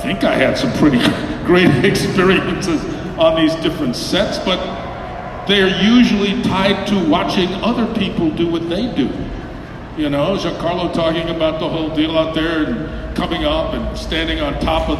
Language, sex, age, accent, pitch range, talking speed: English, male, 50-69, American, 165-225 Hz, 170 wpm